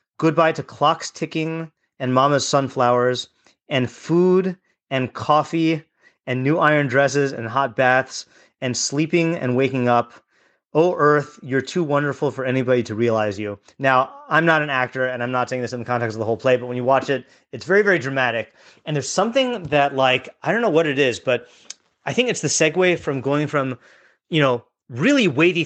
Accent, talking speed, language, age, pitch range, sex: American, 195 wpm, English, 30-49, 130-165 Hz, male